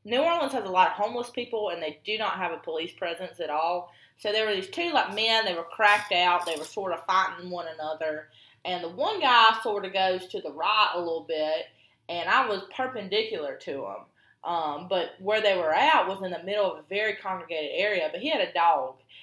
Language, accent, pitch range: English, American, 160-215 Hz